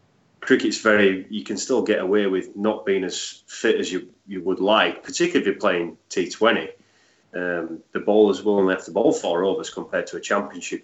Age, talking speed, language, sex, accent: 30-49, 200 wpm, English, male, British